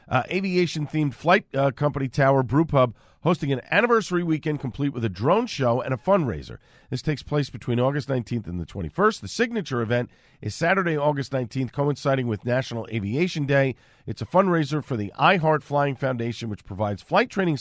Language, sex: English, male